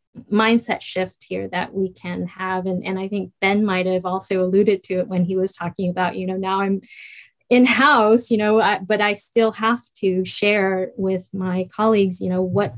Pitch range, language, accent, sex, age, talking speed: 185-220 Hz, English, American, female, 20-39, 205 wpm